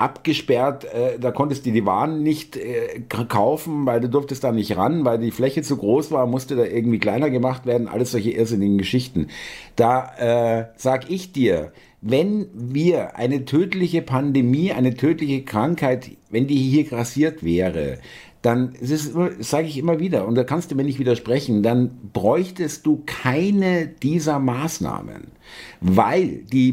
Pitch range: 120-155 Hz